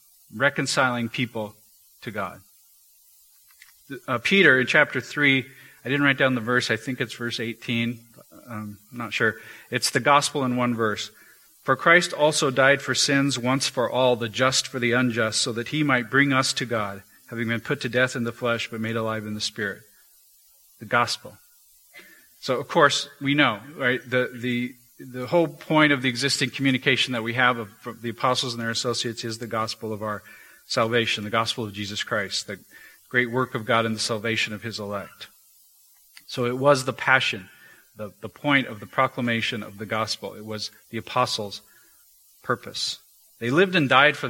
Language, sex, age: English, male, 40-59